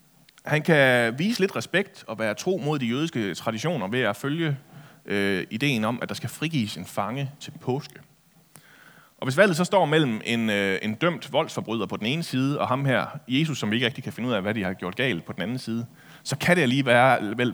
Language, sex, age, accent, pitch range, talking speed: Danish, male, 30-49, native, 115-160 Hz, 225 wpm